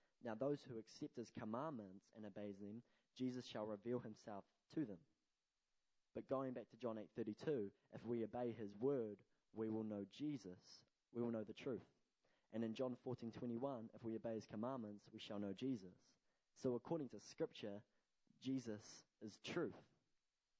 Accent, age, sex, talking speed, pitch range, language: Australian, 20-39, male, 160 wpm, 105-130 Hz, English